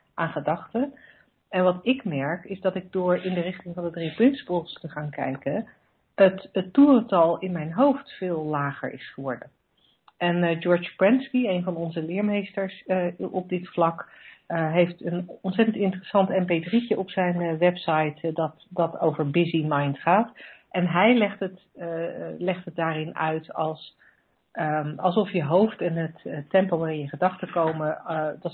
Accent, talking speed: Dutch, 175 wpm